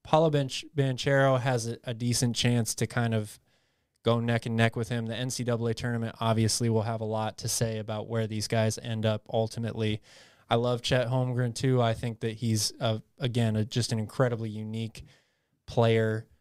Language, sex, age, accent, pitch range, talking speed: English, male, 20-39, American, 110-125 Hz, 185 wpm